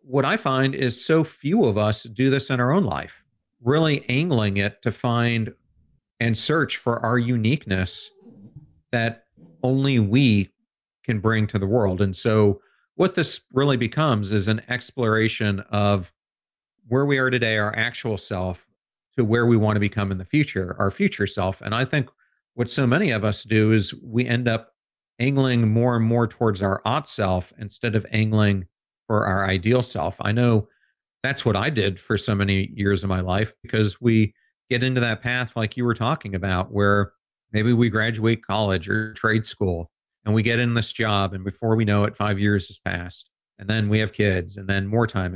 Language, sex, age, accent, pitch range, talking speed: English, male, 40-59, American, 100-120 Hz, 190 wpm